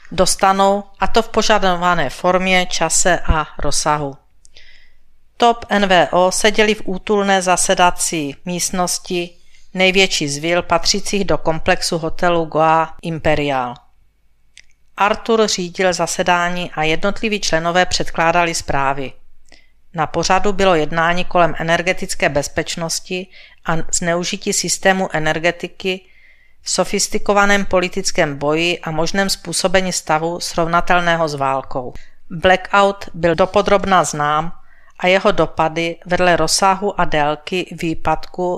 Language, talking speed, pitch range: Czech, 105 wpm, 165-195 Hz